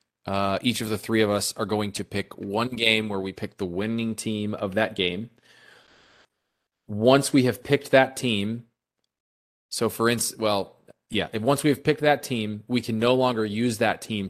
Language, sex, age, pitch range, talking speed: English, male, 20-39, 95-115 Hz, 195 wpm